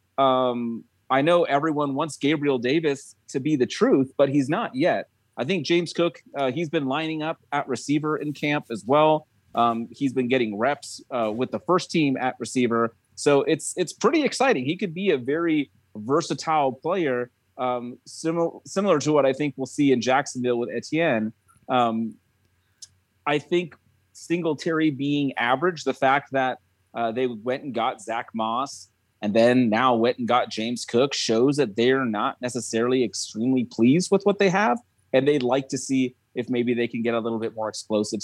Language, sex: English, male